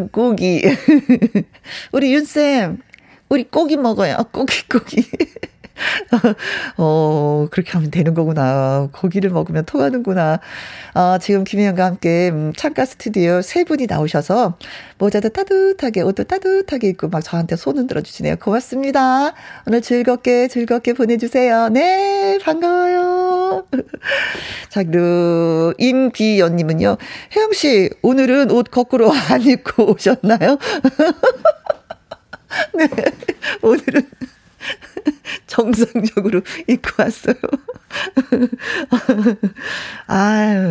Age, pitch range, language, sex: 40-59, 180-275 Hz, Korean, female